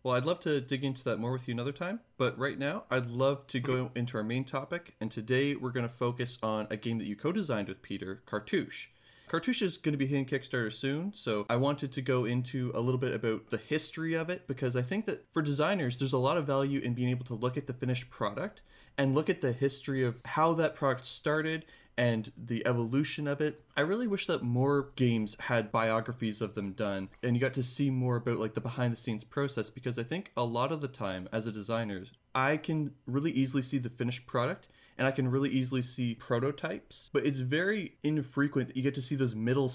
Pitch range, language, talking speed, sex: 115-140 Hz, English, 230 wpm, male